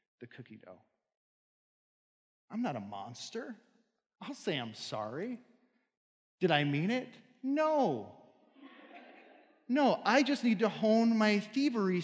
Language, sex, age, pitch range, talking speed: English, male, 40-59, 135-225 Hz, 120 wpm